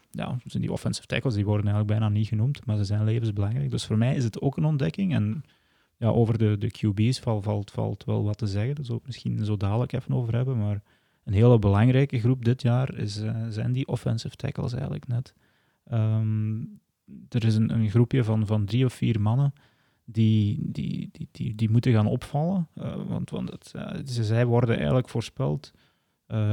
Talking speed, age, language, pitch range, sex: 205 wpm, 20-39, Dutch, 105-125 Hz, male